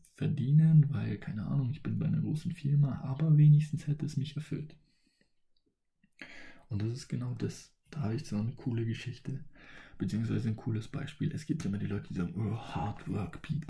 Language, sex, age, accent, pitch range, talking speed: German, male, 20-39, German, 110-150 Hz, 190 wpm